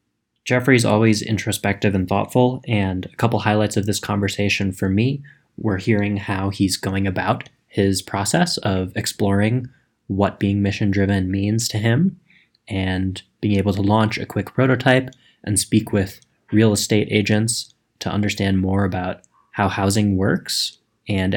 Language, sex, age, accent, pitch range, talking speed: English, male, 20-39, American, 100-115 Hz, 150 wpm